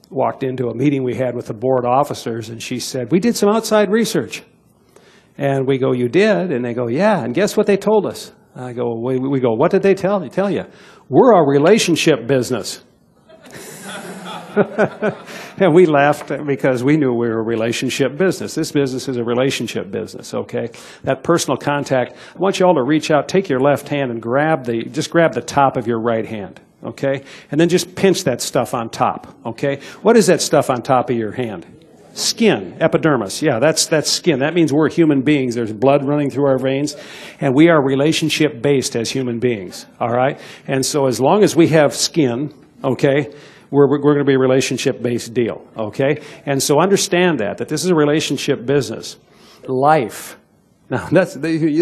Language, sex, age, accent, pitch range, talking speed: English, male, 60-79, American, 130-175 Hz, 195 wpm